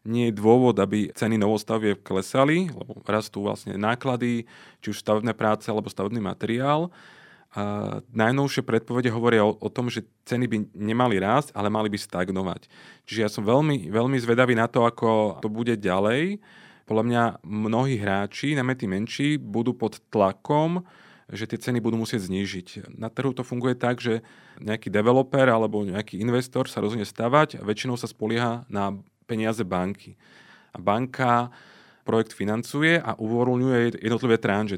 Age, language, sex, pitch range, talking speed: 30-49, Slovak, male, 105-125 Hz, 155 wpm